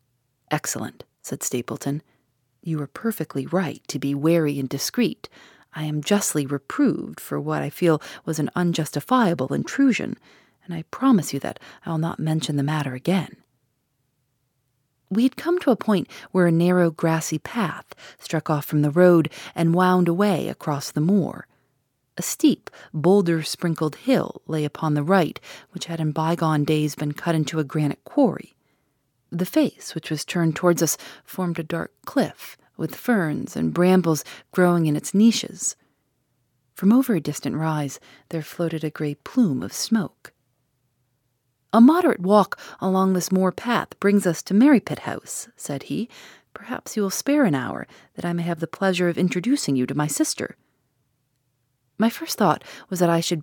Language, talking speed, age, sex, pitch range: English, 165 wpm, 40-59, female, 140-185 Hz